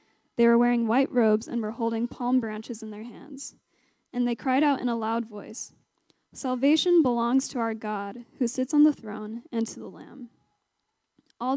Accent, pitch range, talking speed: American, 220-255 Hz, 185 wpm